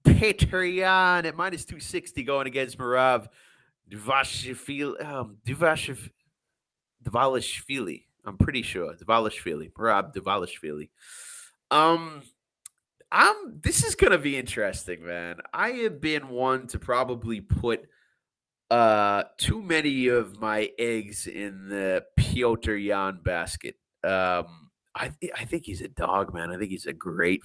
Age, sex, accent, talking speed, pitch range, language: 30-49, male, American, 125 wpm, 100-140 Hz, English